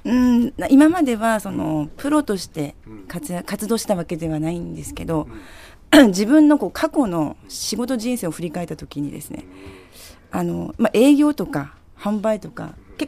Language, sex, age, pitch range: Japanese, female, 40-59, 150-235 Hz